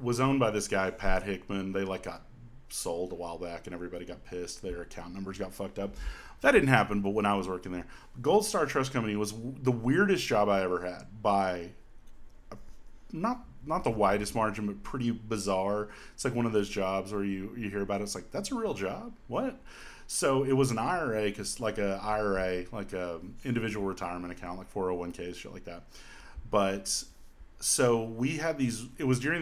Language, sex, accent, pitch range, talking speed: English, male, American, 95-120 Hz, 215 wpm